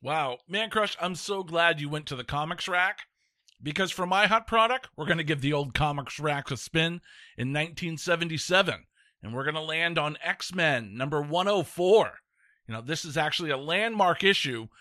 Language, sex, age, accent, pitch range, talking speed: English, male, 40-59, American, 140-180 Hz, 185 wpm